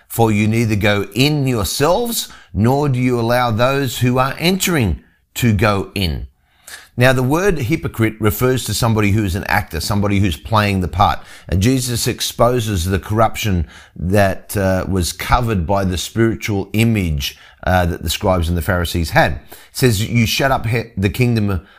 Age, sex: 30-49, male